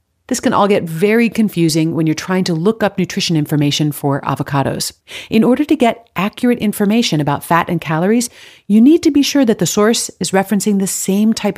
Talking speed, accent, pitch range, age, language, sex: 200 wpm, American, 155-220 Hz, 40-59, English, female